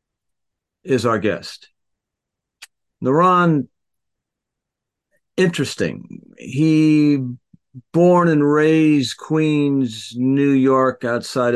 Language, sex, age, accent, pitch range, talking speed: English, male, 50-69, American, 100-130 Hz, 65 wpm